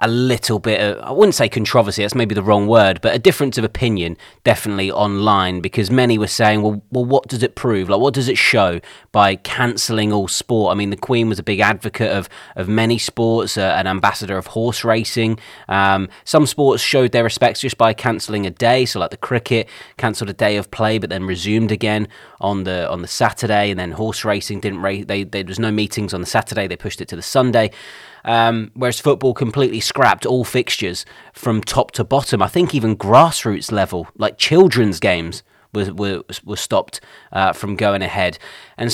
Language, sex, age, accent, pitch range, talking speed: English, male, 30-49, British, 100-120 Hz, 210 wpm